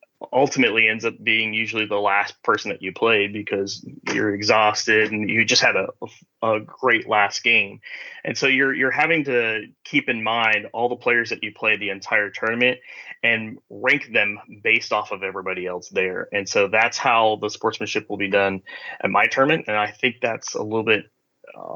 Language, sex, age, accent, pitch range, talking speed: English, male, 30-49, American, 105-125 Hz, 190 wpm